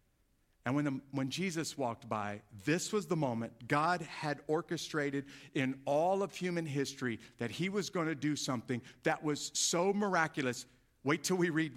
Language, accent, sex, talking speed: English, American, male, 175 wpm